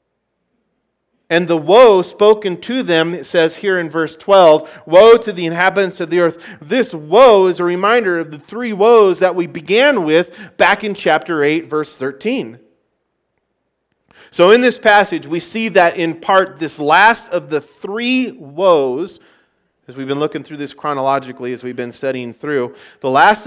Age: 40-59